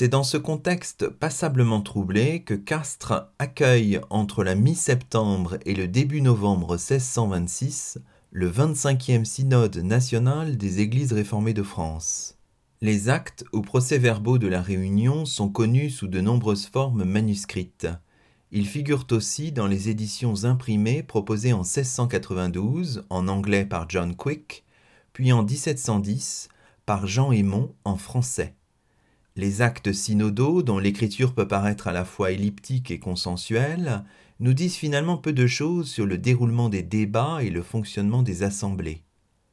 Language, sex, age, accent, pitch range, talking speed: French, male, 40-59, French, 95-125 Hz, 140 wpm